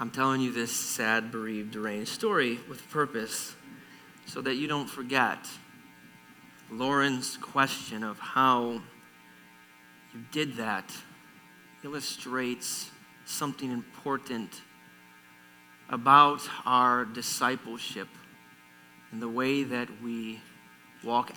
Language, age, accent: English, 30-49, American